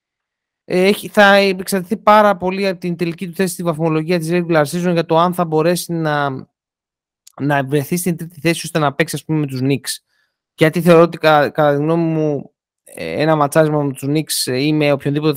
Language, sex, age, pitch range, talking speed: Greek, male, 30-49, 145-180 Hz, 195 wpm